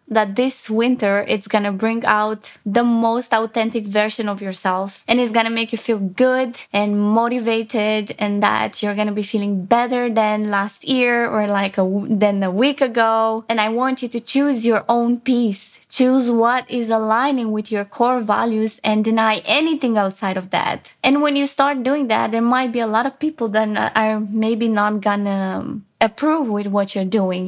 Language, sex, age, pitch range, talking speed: English, female, 20-39, 205-240 Hz, 190 wpm